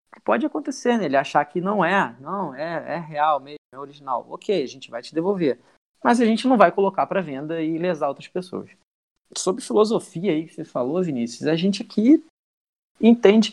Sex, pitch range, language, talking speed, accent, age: male, 150-200 Hz, Portuguese, 200 wpm, Brazilian, 20-39